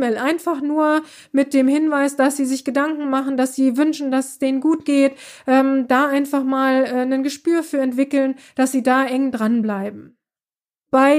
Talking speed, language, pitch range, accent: 175 wpm, German, 255-285 Hz, German